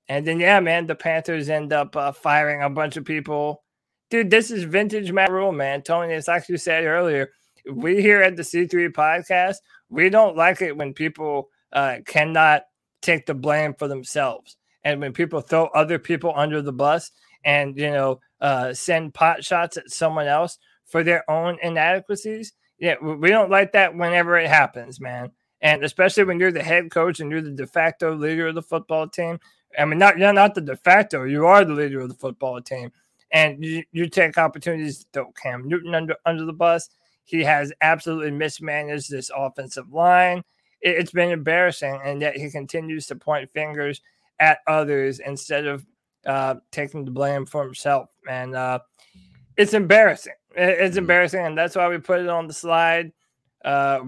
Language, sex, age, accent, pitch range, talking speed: English, male, 20-39, American, 145-175 Hz, 185 wpm